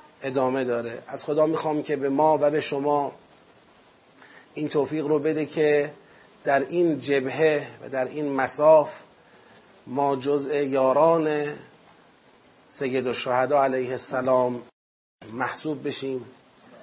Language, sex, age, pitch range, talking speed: Persian, male, 30-49, 135-155 Hz, 115 wpm